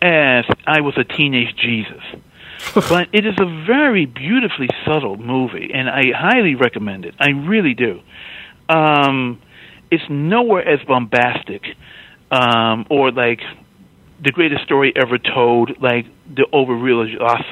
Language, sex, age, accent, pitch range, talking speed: English, male, 50-69, American, 120-160 Hz, 135 wpm